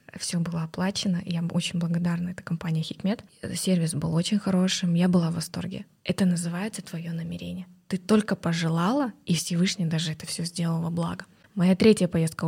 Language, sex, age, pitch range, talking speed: Russian, female, 20-39, 175-195 Hz, 165 wpm